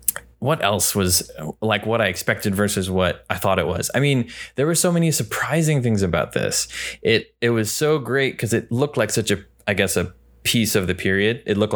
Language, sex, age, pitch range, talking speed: English, male, 20-39, 95-135 Hz, 220 wpm